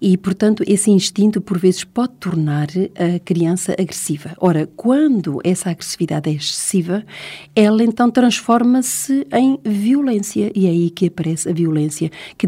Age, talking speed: 50-69, 145 wpm